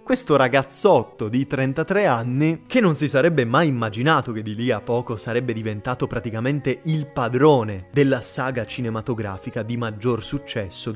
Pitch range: 110-150 Hz